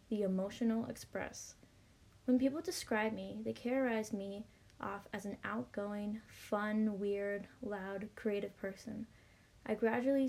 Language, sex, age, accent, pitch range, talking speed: English, female, 20-39, American, 205-245 Hz, 120 wpm